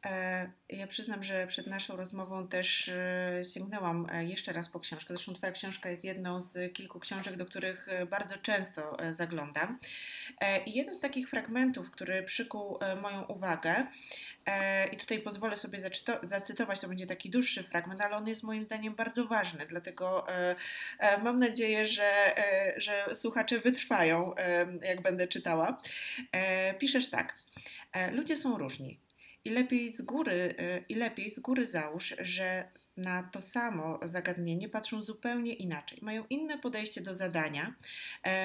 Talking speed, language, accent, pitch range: 140 wpm, Polish, native, 180-235 Hz